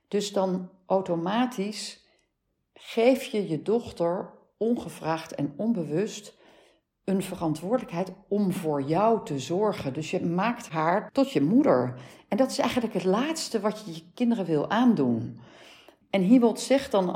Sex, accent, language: female, Dutch, Dutch